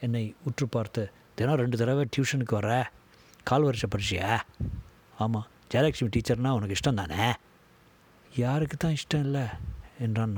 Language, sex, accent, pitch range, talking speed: Tamil, male, native, 105-130 Hz, 120 wpm